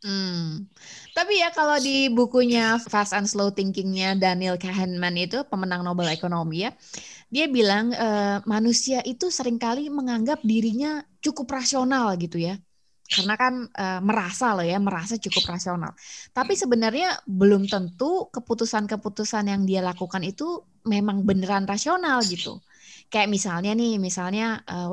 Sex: female